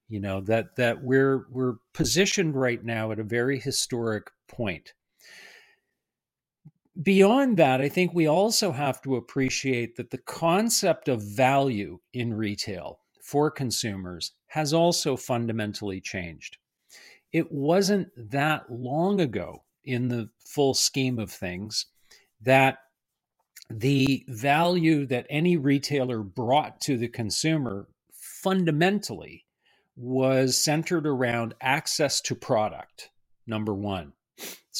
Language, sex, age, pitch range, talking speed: English, male, 50-69, 115-155 Hz, 115 wpm